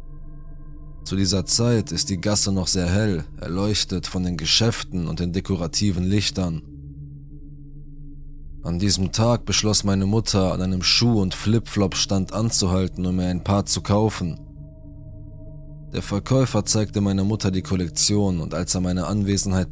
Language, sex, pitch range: German, male, 85-105 Hz